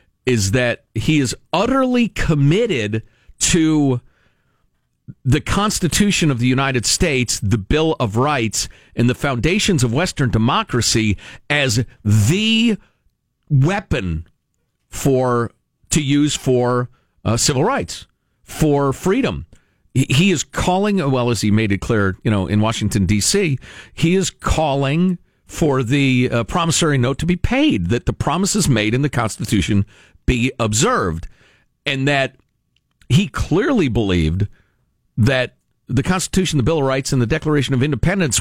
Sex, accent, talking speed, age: male, American, 135 wpm, 50-69